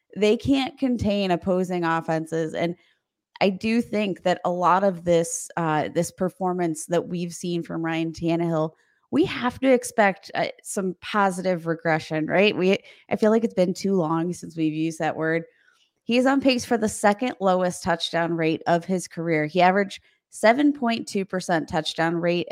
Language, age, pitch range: English, 20-39, 165-200 Hz